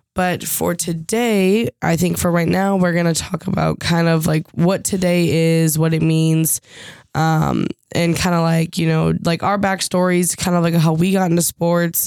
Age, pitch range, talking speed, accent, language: 10-29, 160-180 Hz, 200 wpm, American, English